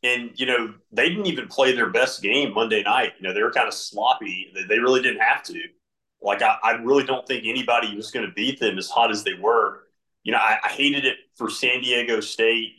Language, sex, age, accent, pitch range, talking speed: English, male, 30-49, American, 105-125 Hz, 240 wpm